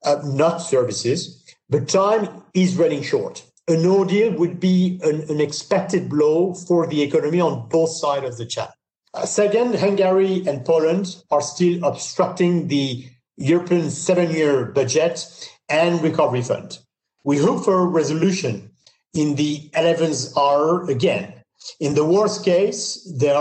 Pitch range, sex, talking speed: 145-180 Hz, male, 145 wpm